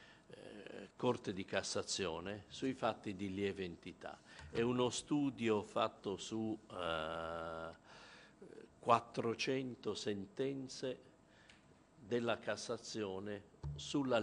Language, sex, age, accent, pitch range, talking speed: Italian, male, 50-69, native, 100-125 Hz, 75 wpm